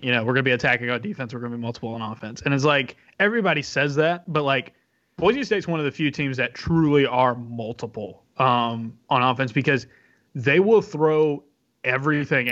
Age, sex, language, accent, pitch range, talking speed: 20-39, male, English, American, 130-160 Hz, 195 wpm